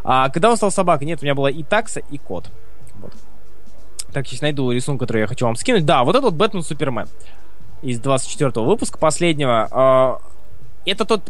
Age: 20-39